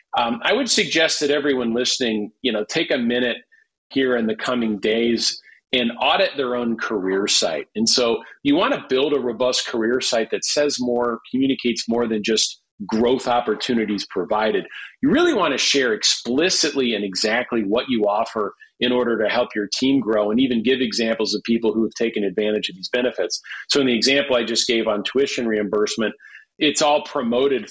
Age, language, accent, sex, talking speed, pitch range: 40-59, English, American, male, 190 wpm, 110-135 Hz